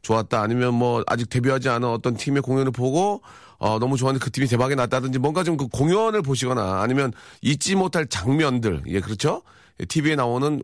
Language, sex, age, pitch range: Korean, male, 40-59, 110-145 Hz